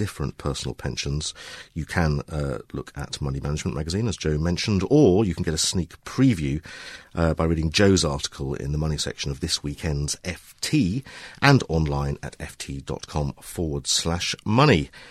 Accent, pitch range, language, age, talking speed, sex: British, 70-100 Hz, English, 50-69, 165 wpm, male